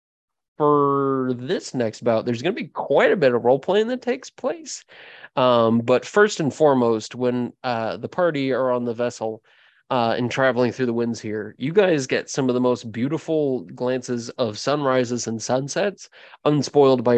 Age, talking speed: 20-39, 180 wpm